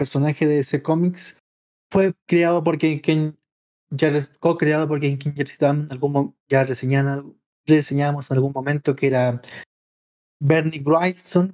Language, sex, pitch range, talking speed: Spanish, male, 140-170 Hz, 110 wpm